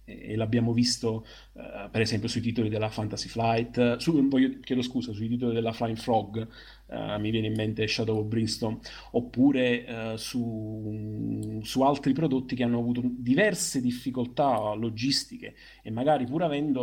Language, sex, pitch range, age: Italian, male, 110-130 Hz, 30-49